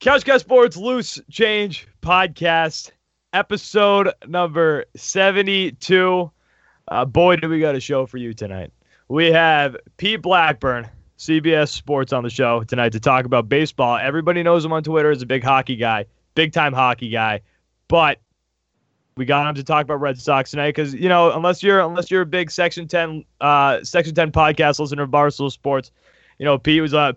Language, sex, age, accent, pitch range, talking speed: English, male, 20-39, American, 135-180 Hz, 175 wpm